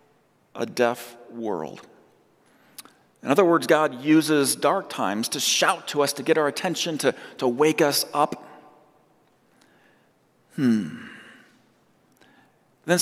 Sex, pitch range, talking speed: male, 130-155 Hz, 115 wpm